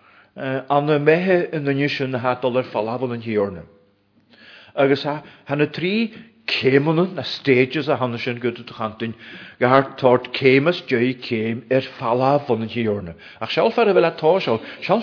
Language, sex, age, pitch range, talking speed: English, male, 40-59, 120-160 Hz, 50 wpm